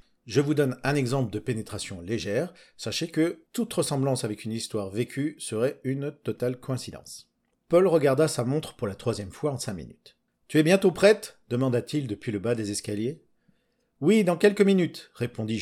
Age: 50-69